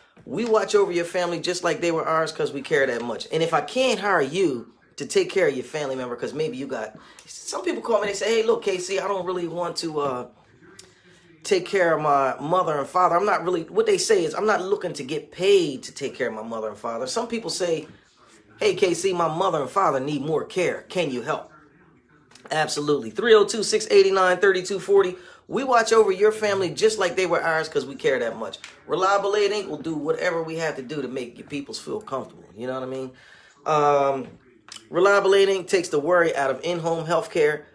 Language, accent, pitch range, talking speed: English, American, 155-255 Hz, 215 wpm